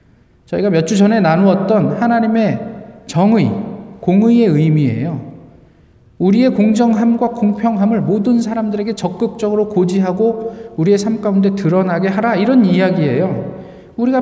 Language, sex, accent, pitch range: Korean, male, native, 155-220 Hz